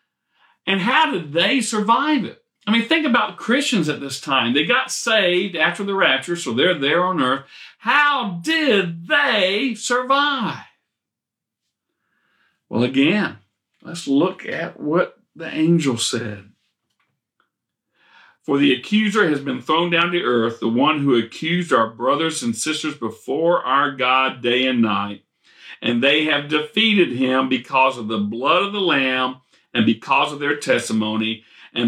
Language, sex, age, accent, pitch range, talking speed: English, male, 50-69, American, 115-170 Hz, 150 wpm